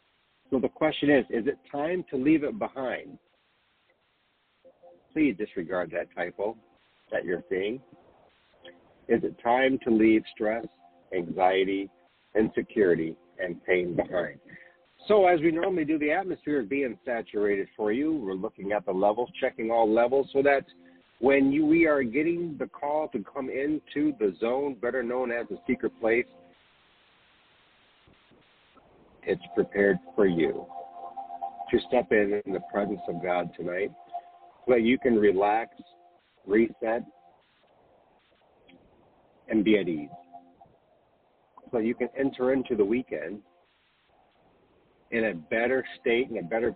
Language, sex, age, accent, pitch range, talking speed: English, male, 60-79, American, 90-140 Hz, 135 wpm